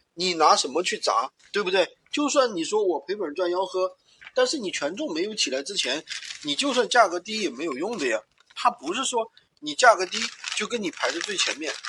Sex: male